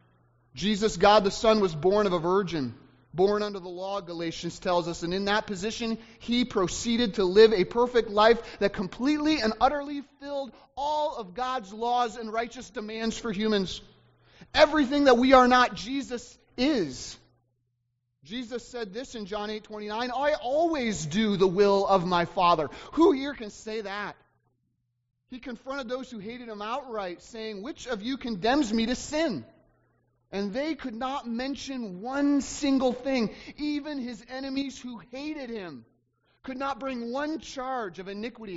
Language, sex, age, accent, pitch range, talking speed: English, male, 30-49, American, 170-245 Hz, 160 wpm